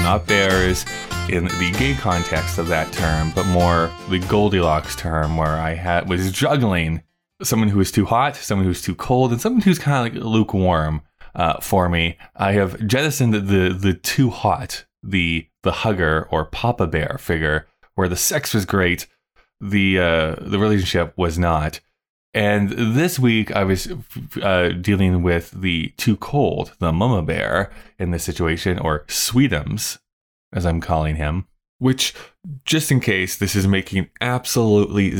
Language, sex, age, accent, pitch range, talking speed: English, male, 20-39, American, 85-110 Hz, 165 wpm